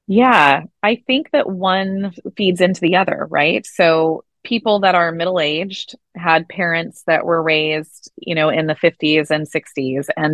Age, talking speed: 20-39, 165 wpm